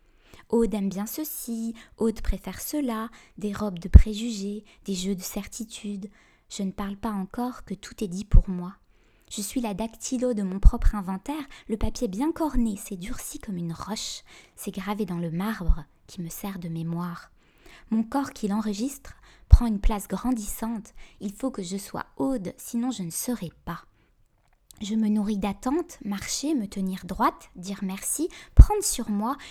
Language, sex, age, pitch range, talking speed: French, female, 20-39, 195-235 Hz, 175 wpm